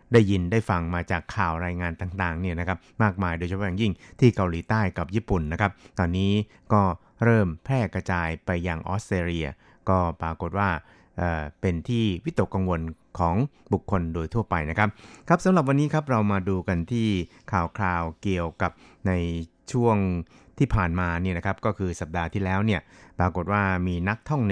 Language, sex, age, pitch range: Thai, male, 60-79, 85-105 Hz